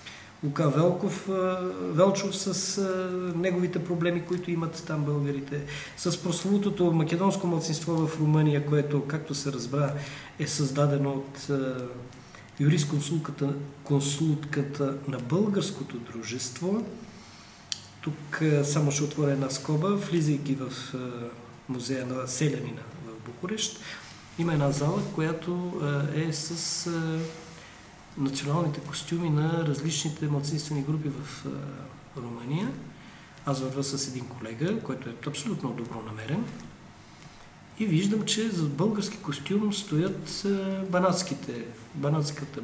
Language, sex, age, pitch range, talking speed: Bulgarian, male, 40-59, 140-175 Hz, 105 wpm